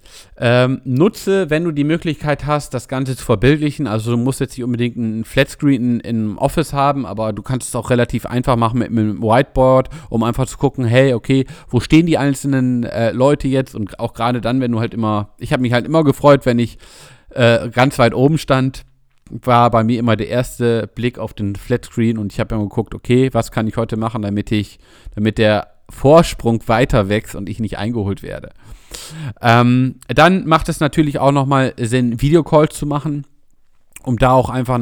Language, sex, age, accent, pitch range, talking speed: German, male, 40-59, German, 115-135 Hz, 200 wpm